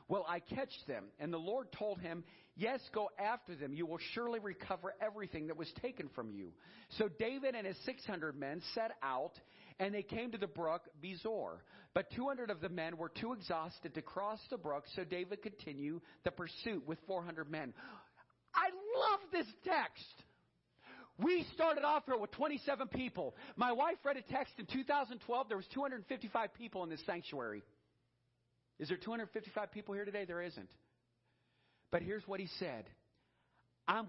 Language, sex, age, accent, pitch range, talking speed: English, male, 40-59, American, 160-240 Hz, 170 wpm